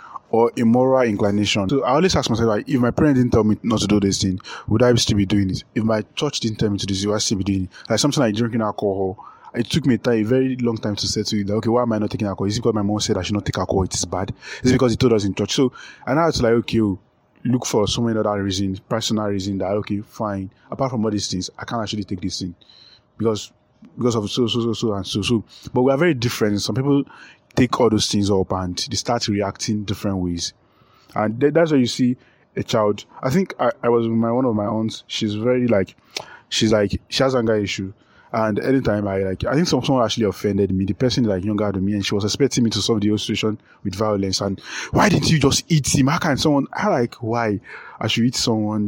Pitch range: 100-125 Hz